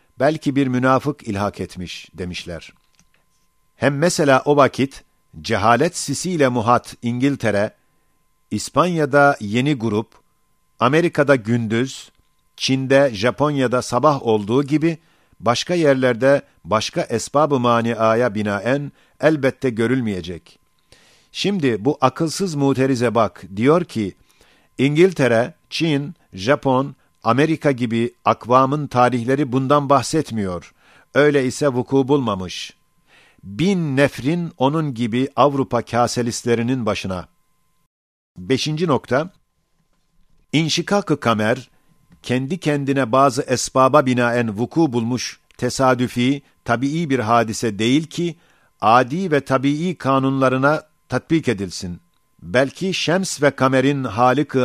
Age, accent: 50-69, native